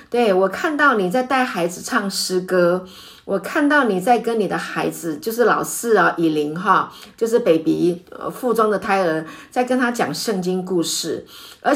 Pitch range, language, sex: 180-250 Hz, Chinese, female